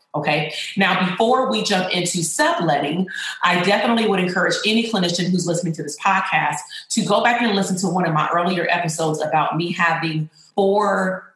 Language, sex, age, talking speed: English, female, 30-49, 175 wpm